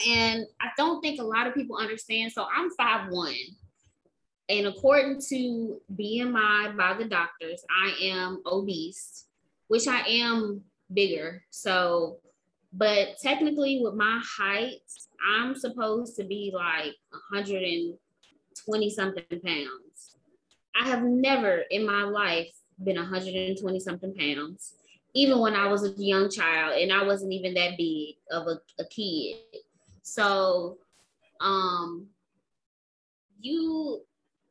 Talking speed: 120 wpm